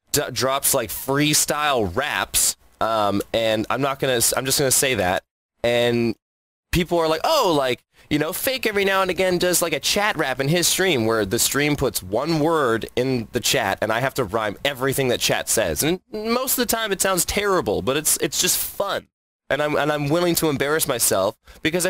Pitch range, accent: 130-180 Hz, American